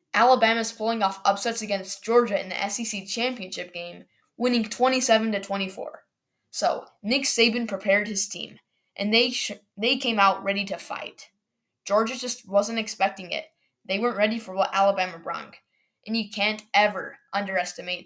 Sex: female